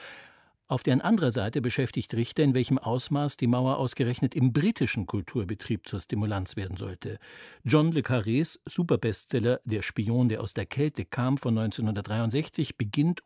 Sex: male